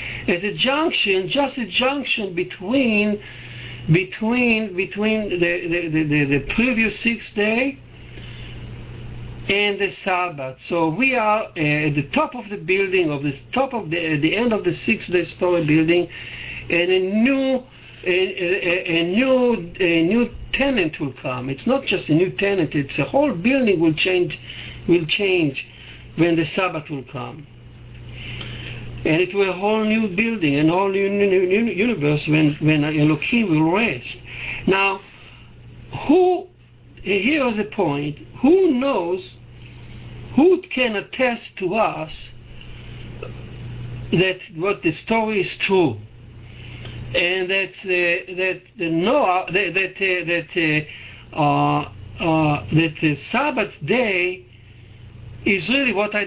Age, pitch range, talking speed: 60-79, 130-205 Hz, 125 wpm